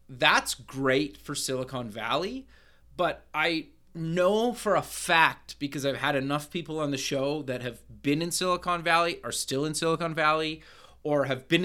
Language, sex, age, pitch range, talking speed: English, male, 30-49, 130-170 Hz, 170 wpm